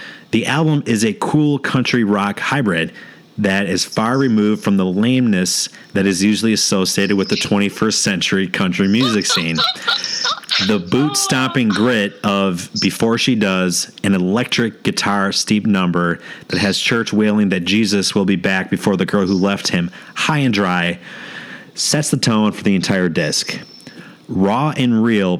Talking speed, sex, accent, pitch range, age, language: 155 wpm, male, American, 95-115 Hz, 30-49, English